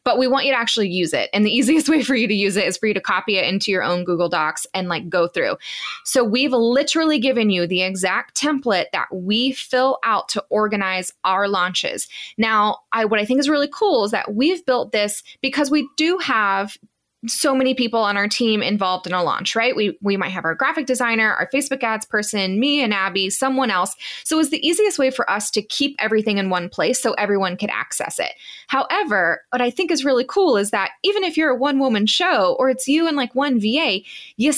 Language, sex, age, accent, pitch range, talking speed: English, female, 20-39, American, 205-275 Hz, 235 wpm